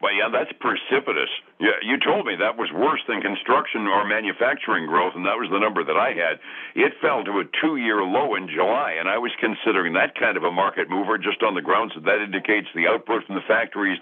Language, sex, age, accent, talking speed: English, male, 60-79, American, 230 wpm